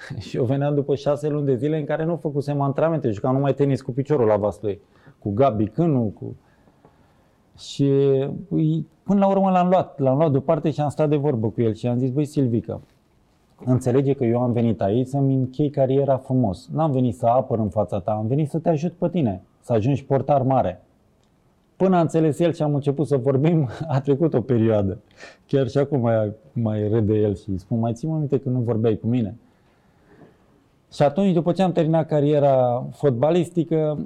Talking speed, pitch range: 200 wpm, 115-150 Hz